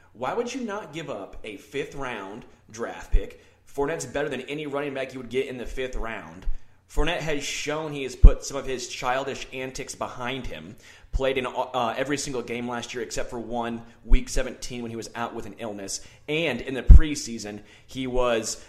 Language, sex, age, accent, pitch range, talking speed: English, male, 30-49, American, 110-135 Hz, 200 wpm